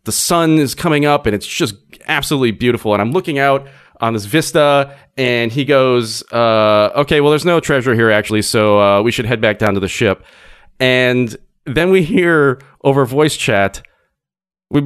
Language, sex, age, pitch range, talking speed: English, male, 30-49, 130-190 Hz, 185 wpm